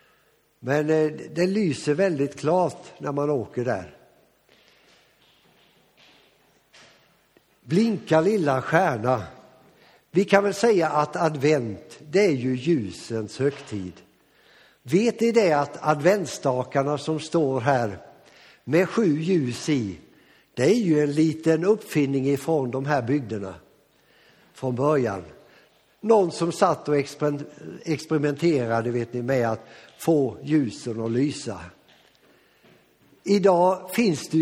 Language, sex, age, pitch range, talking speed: Swedish, male, 60-79, 125-165 Hz, 110 wpm